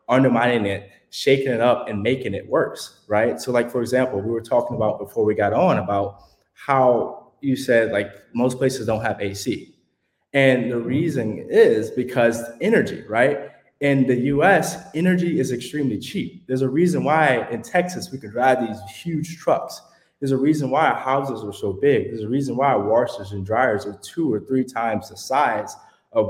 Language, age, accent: English, 20-39, American